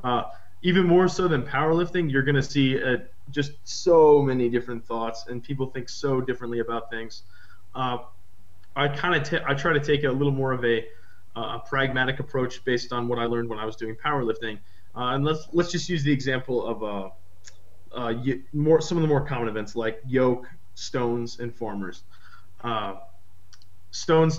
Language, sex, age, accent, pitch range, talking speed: English, male, 20-39, American, 110-135 Hz, 185 wpm